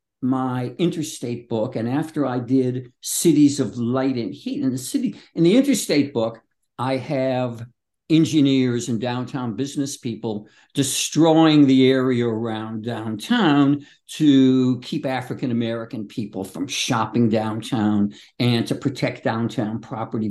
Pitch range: 120-160 Hz